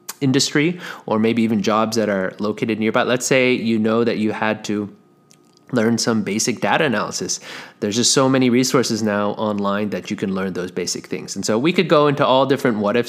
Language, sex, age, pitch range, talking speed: English, male, 30-49, 105-130 Hz, 205 wpm